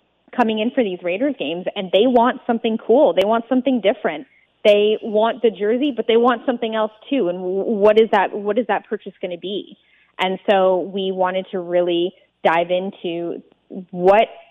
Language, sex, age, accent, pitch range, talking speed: English, female, 20-39, American, 175-220 Hz, 180 wpm